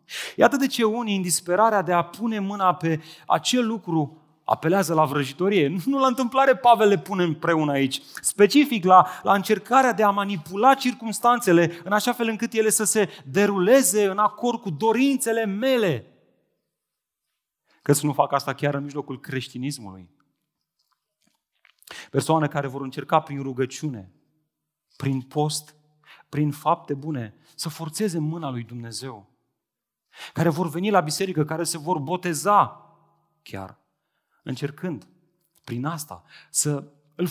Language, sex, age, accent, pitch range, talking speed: Romanian, male, 30-49, native, 140-210 Hz, 135 wpm